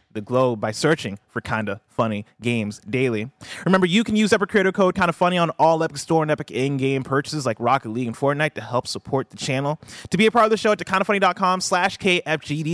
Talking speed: 230 wpm